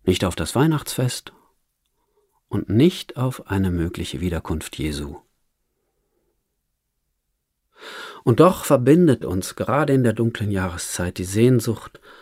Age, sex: 50-69, male